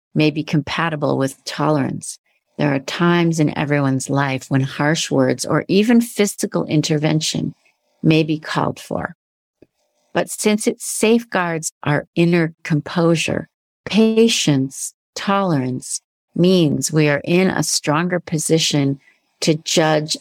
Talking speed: 120 wpm